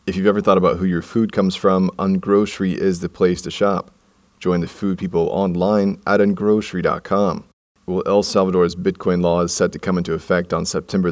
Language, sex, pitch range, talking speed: English, male, 85-95 Hz, 195 wpm